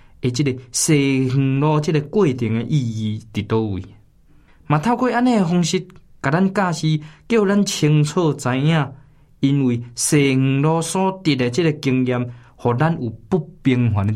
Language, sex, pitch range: Chinese, male, 120-175 Hz